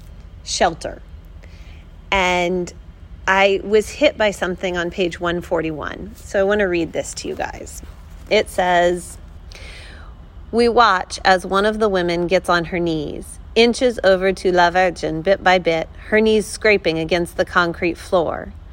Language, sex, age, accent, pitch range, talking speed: English, female, 30-49, American, 125-195 Hz, 150 wpm